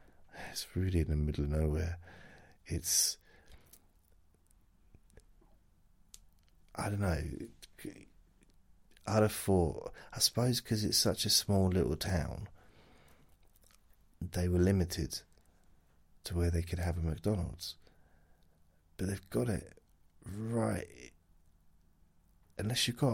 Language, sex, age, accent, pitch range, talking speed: English, male, 40-59, British, 80-95 Hz, 105 wpm